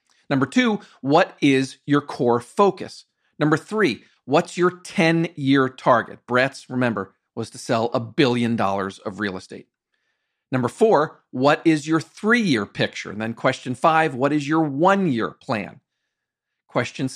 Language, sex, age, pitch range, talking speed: English, male, 40-59, 125-180 Hz, 145 wpm